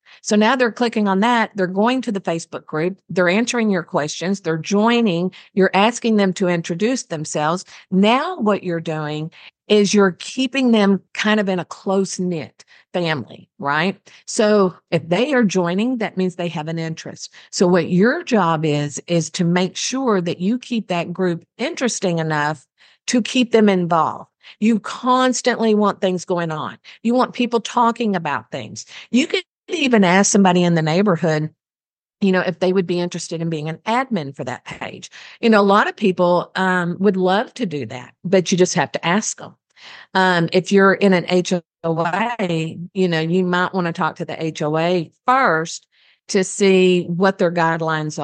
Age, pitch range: 50-69, 165-215 Hz